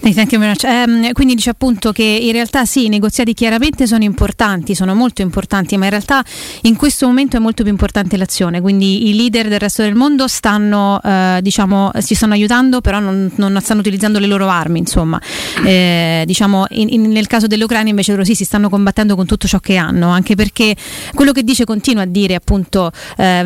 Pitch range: 190-225 Hz